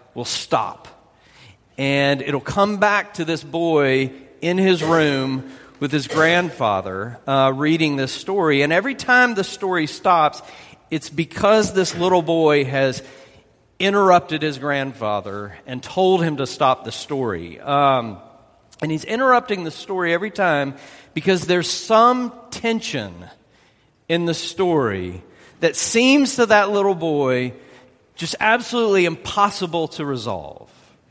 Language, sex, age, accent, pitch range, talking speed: English, male, 40-59, American, 135-185 Hz, 130 wpm